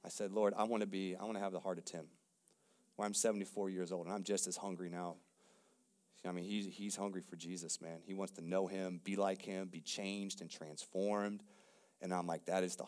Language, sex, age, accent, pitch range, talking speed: English, male, 30-49, American, 95-130 Hz, 240 wpm